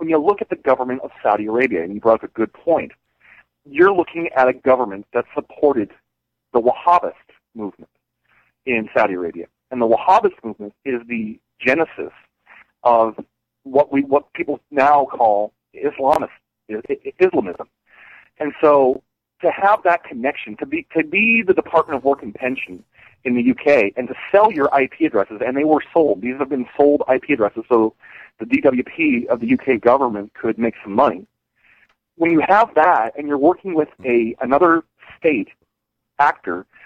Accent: American